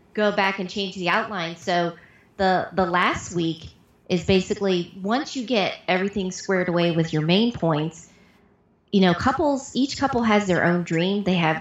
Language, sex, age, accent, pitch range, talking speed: English, female, 30-49, American, 165-210 Hz, 175 wpm